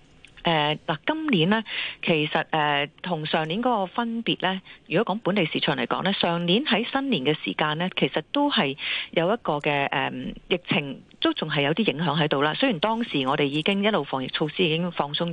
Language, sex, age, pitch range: Chinese, female, 40-59, 145-205 Hz